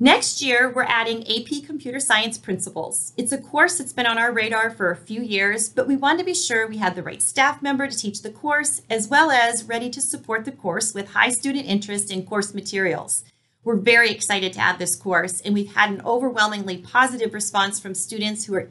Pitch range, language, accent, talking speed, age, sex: 195-245 Hz, English, American, 220 wpm, 40-59, female